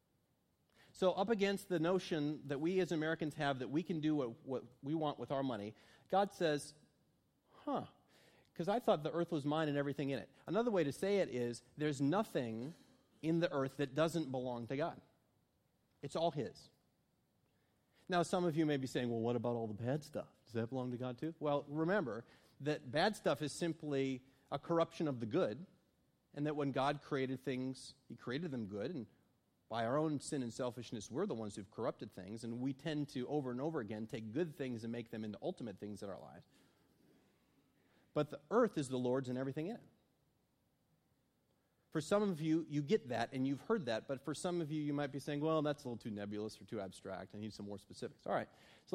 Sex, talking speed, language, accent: male, 215 wpm, English, American